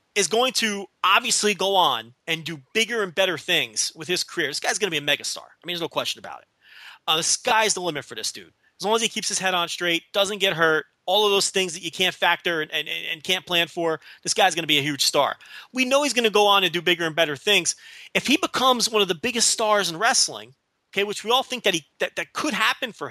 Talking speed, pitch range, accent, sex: 275 wpm, 180-265 Hz, American, male